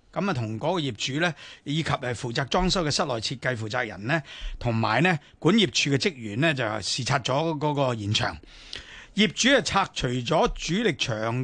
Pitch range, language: 125-185 Hz, Chinese